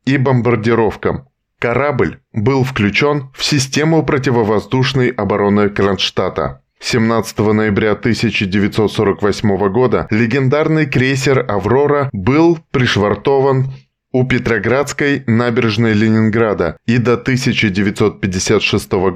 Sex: male